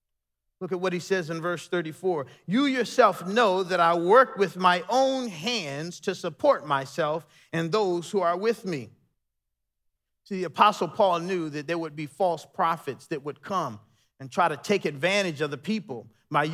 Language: English